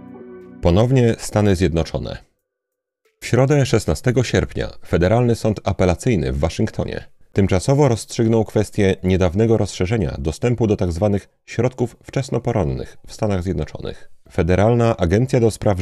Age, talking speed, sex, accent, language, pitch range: 40-59, 110 wpm, male, native, Polish, 90-115 Hz